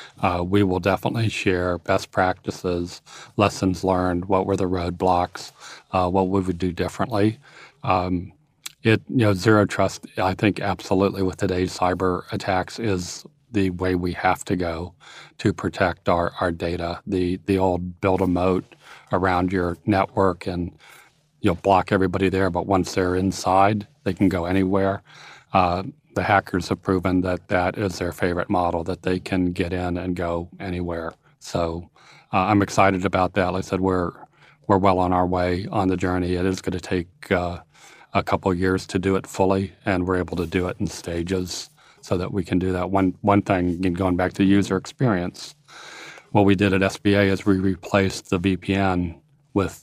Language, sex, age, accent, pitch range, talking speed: English, male, 40-59, American, 90-100 Hz, 180 wpm